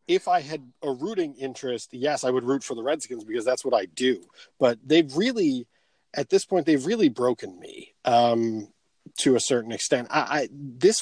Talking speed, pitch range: 185 wpm, 120-150 Hz